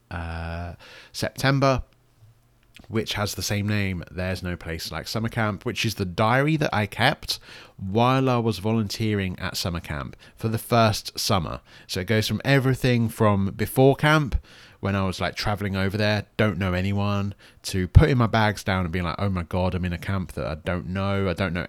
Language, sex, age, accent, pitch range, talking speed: English, male, 30-49, British, 95-120 Hz, 195 wpm